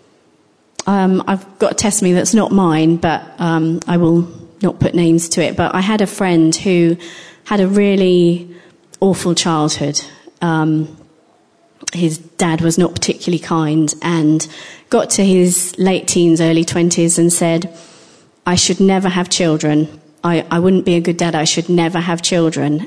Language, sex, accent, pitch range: English, female, British, 165-185 Hz